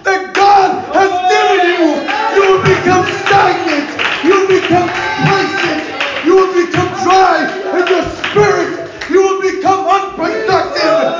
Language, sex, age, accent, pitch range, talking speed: English, male, 20-39, American, 335-375 Hz, 130 wpm